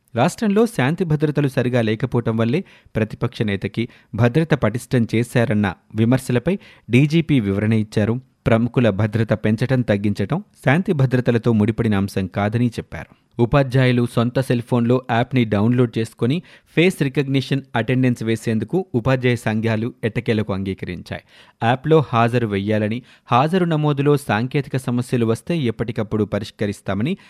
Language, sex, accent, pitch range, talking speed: Telugu, male, native, 110-135 Hz, 110 wpm